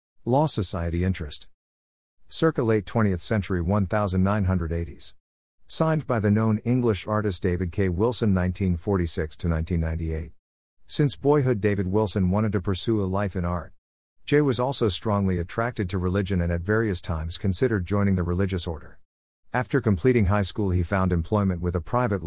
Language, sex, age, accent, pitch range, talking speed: English, male, 50-69, American, 85-105 Hz, 150 wpm